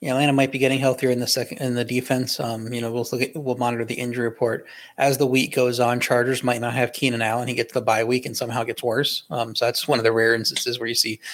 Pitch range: 115-130 Hz